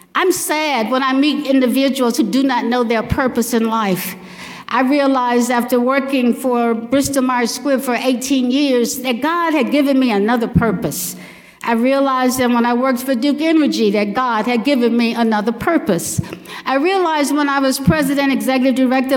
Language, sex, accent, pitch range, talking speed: English, female, American, 240-285 Hz, 170 wpm